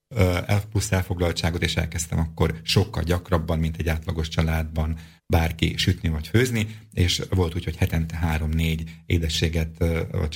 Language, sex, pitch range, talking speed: Slovak, male, 80-95 Hz, 140 wpm